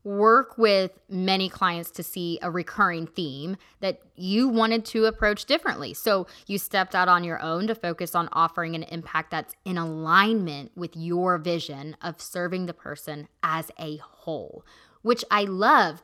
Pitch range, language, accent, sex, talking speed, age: 170-210 Hz, English, American, female, 165 wpm, 20-39